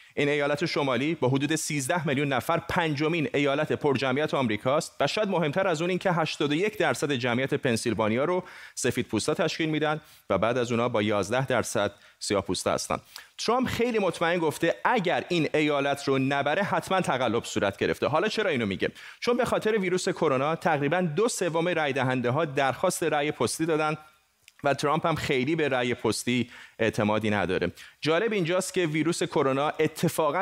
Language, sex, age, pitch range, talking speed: Persian, male, 30-49, 130-180 Hz, 165 wpm